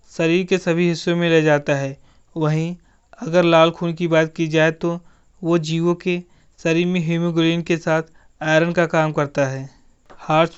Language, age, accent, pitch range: Hindi, 30-49, native, 160-175 Hz